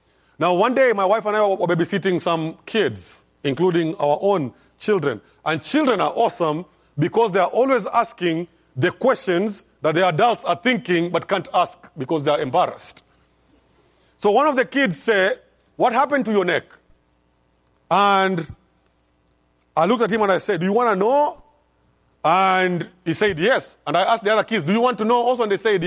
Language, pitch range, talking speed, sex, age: English, 160-220 Hz, 190 wpm, male, 40-59